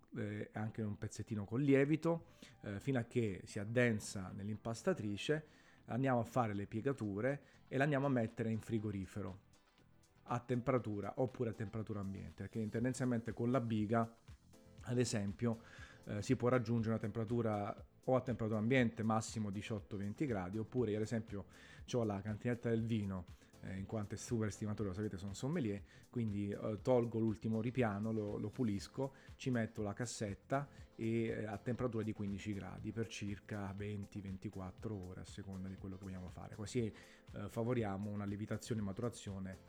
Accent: native